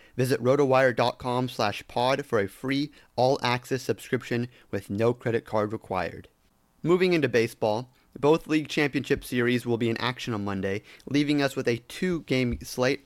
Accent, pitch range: American, 110-130 Hz